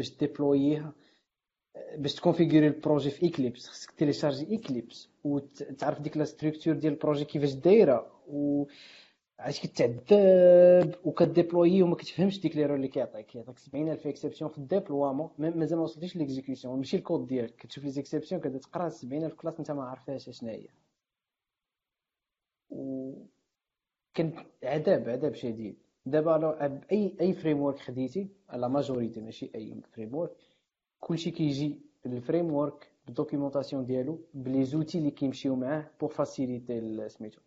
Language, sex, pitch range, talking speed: Arabic, male, 135-160 Hz, 95 wpm